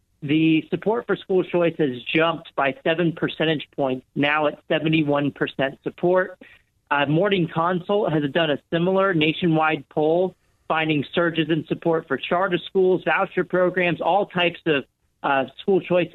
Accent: American